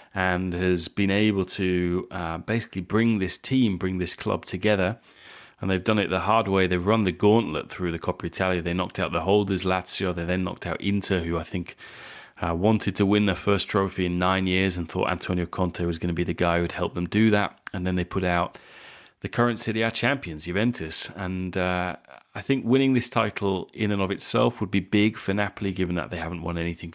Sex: male